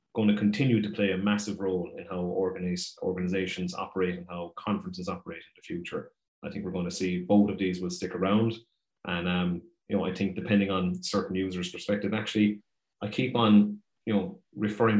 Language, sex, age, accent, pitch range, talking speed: English, male, 30-49, Irish, 95-105 Hz, 195 wpm